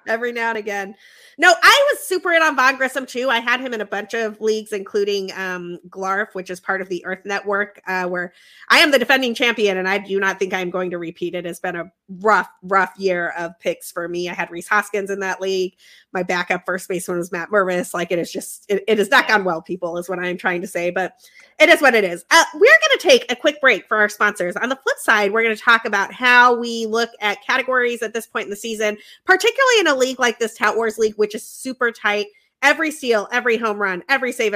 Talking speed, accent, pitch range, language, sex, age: 250 wpm, American, 195-255 Hz, English, female, 30-49